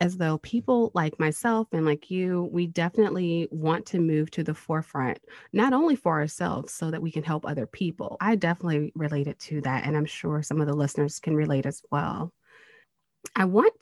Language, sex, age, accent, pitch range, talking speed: English, female, 30-49, American, 155-215 Hz, 195 wpm